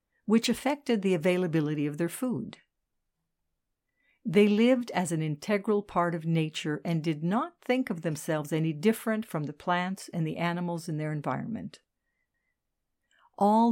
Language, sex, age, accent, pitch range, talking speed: English, female, 60-79, American, 165-220 Hz, 145 wpm